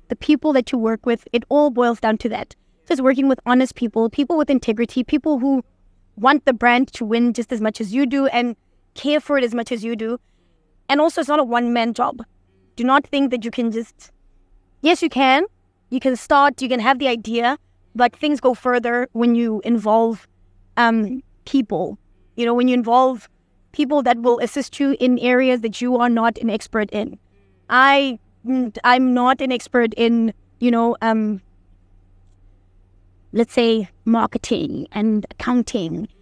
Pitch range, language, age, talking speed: 225-260 Hz, English, 20-39, 180 wpm